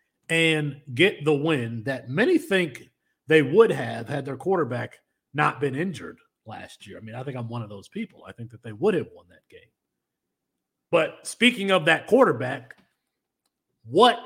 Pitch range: 130-180 Hz